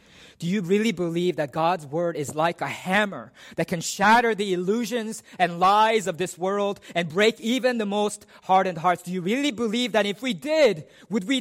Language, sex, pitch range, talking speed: English, male, 125-195 Hz, 200 wpm